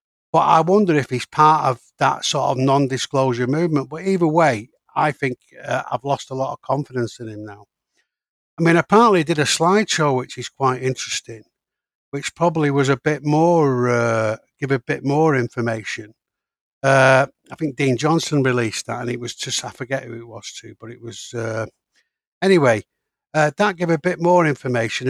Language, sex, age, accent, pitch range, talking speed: English, male, 60-79, British, 125-155 Hz, 190 wpm